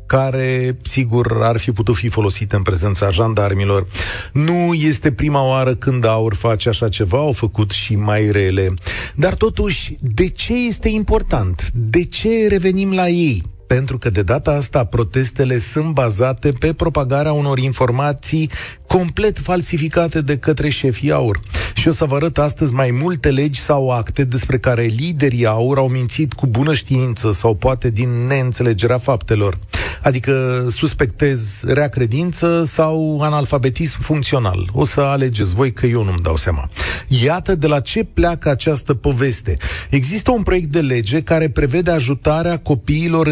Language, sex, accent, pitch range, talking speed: Romanian, male, native, 120-155 Hz, 150 wpm